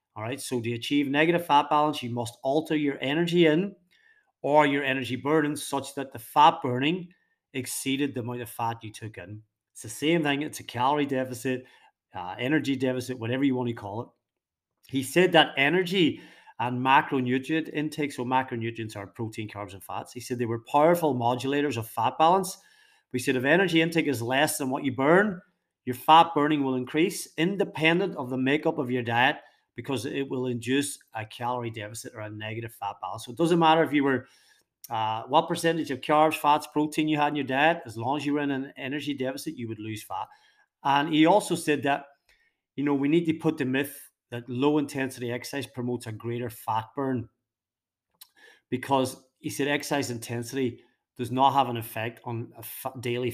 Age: 40-59